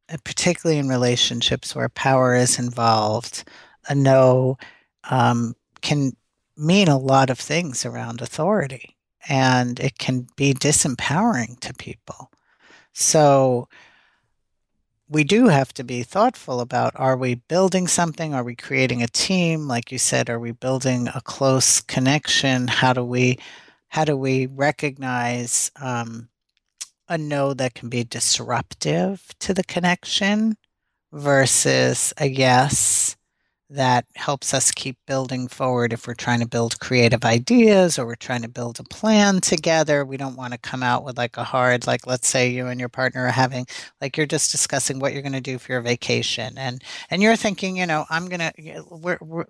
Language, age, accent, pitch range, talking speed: English, 50-69, American, 125-155 Hz, 160 wpm